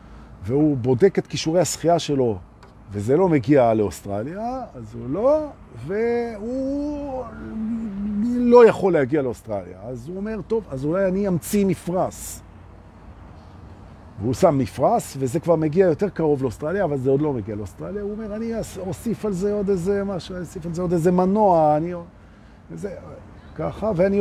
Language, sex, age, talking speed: Hebrew, male, 50-69, 120 wpm